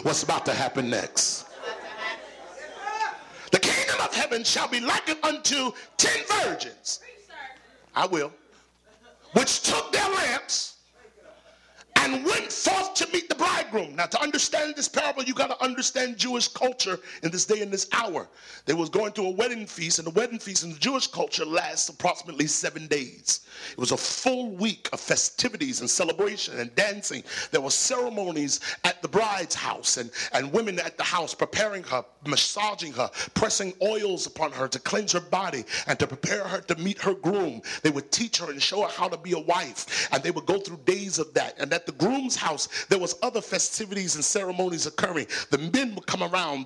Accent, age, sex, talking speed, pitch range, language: American, 40-59, male, 185 wpm, 175-255 Hz, English